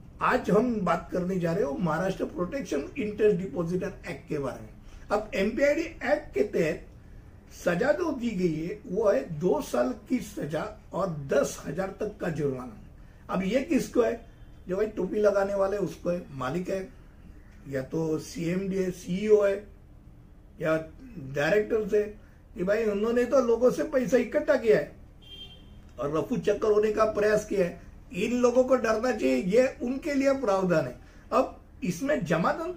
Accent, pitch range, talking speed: native, 170-245 Hz, 160 wpm